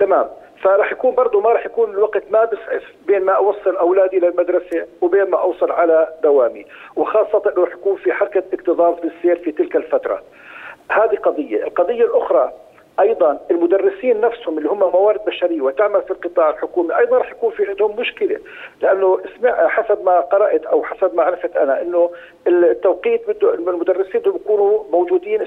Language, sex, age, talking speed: Arabic, male, 50-69, 165 wpm